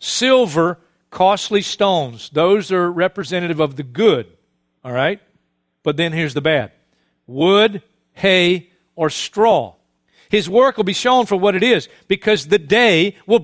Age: 50-69